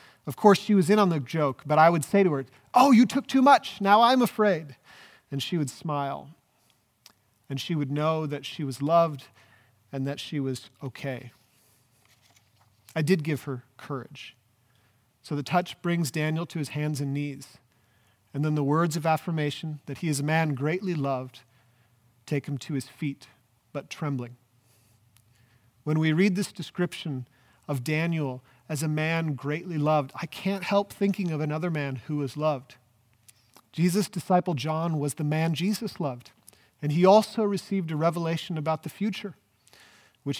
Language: English